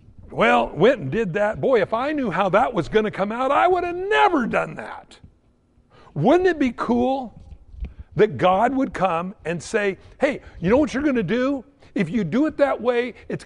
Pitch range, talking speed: 165-245 Hz, 210 wpm